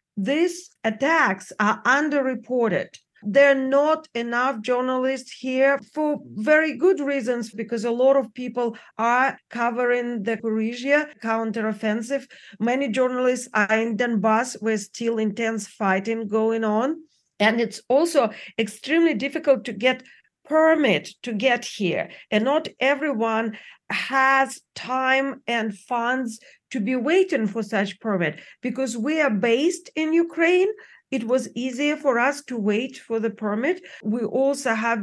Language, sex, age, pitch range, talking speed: English, female, 40-59, 225-275 Hz, 135 wpm